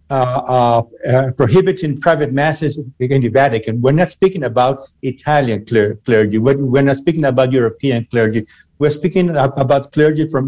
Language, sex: English, male